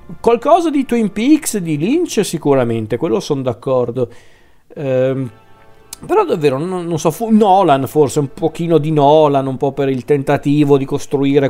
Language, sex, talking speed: Italian, male, 155 wpm